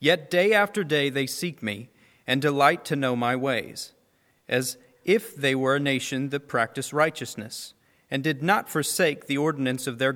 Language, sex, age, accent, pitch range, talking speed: English, male, 40-59, American, 130-155 Hz, 175 wpm